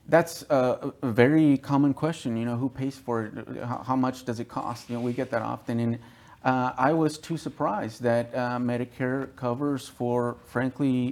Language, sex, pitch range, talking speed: English, male, 115-135 Hz, 185 wpm